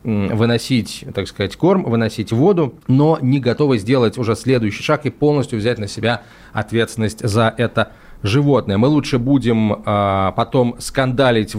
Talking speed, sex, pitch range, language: 145 wpm, male, 110-150 Hz, Russian